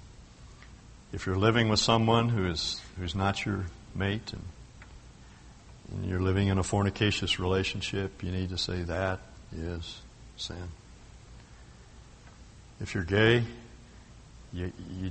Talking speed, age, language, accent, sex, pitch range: 120 wpm, 60-79, English, American, male, 90-105 Hz